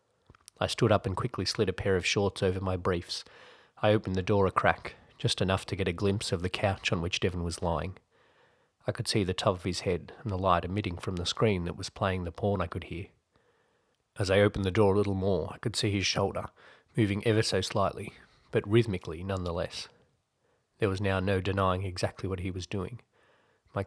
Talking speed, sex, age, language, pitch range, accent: 220 wpm, male, 30-49, English, 95-105 Hz, Australian